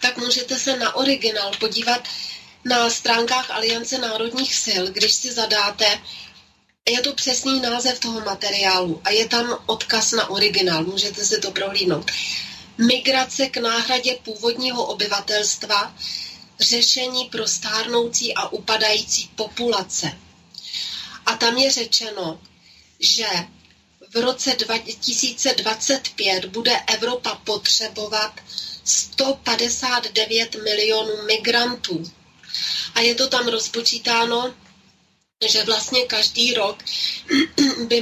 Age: 30-49